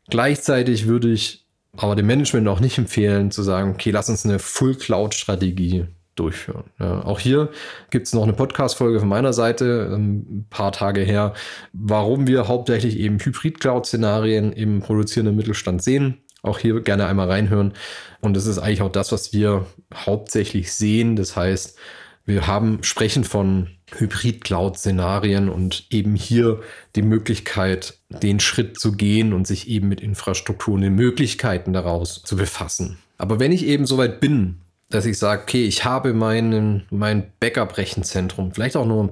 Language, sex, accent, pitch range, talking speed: German, male, German, 95-115 Hz, 155 wpm